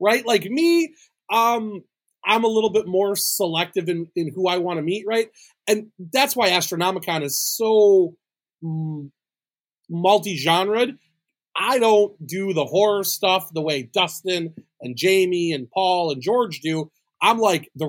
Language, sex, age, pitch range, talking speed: English, male, 30-49, 170-225 Hz, 150 wpm